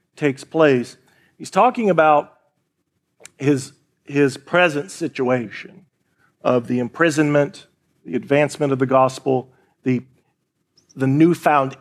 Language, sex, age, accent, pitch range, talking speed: English, male, 40-59, American, 135-165 Hz, 100 wpm